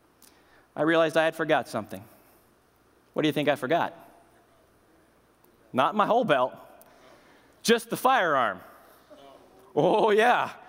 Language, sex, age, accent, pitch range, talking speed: English, male, 20-39, American, 180-245 Hz, 120 wpm